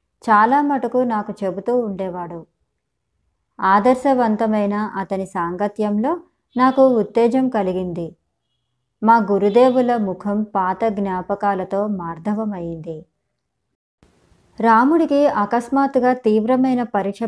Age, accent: 20-39, native